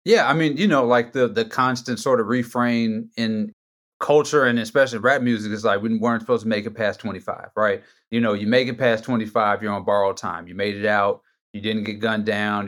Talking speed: 230 wpm